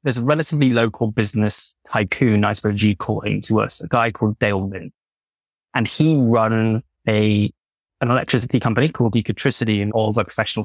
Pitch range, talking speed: 110-130 Hz, 175 wpm